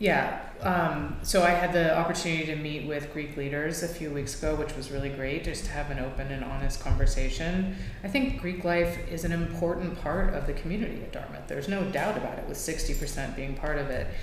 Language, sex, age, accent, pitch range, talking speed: English, female, 30-49, American, 135-165 Hz, 220 wpm